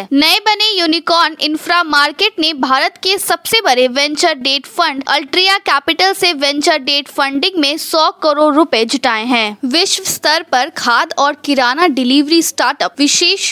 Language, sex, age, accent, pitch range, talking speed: Hindi, female, 20-39, native, 240-335 Hz, 150 wpm